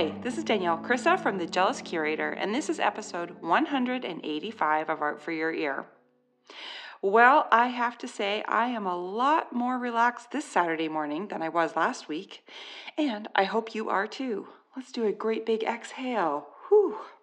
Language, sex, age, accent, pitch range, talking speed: English, female, 40-59, American, 190-250 Hz, 170 wpm